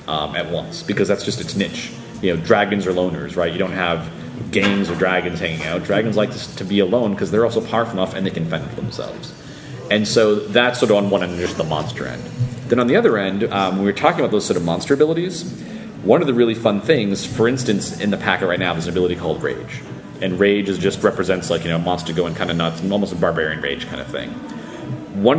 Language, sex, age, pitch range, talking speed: English, male, 30-49, 90-120 Hz, 255 wpm